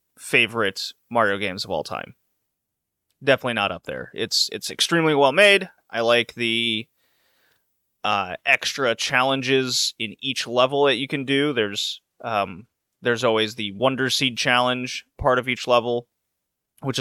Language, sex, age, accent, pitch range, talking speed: English, male, 30-49, American, 115-140 Hz, 145 wpm